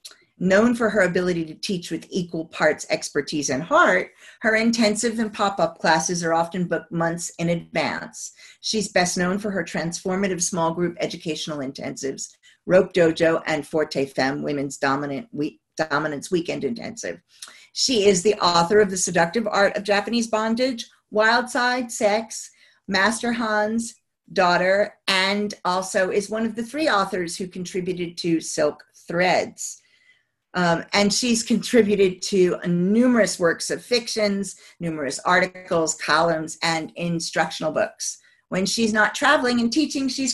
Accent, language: American, English